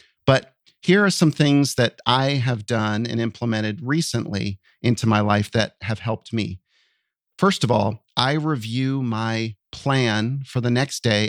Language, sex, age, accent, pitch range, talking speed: English, male, 40-59, American, 110-140 Hz, 160 wpm